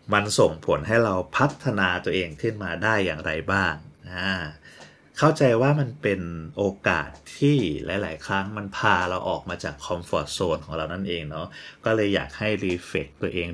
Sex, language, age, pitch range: male, Thai, 30-49, 90-110 Hz